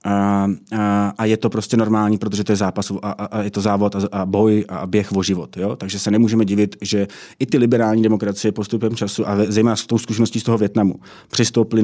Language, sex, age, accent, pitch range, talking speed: Czech, male, 30-49, native, 100-115 Hz, 230 wpm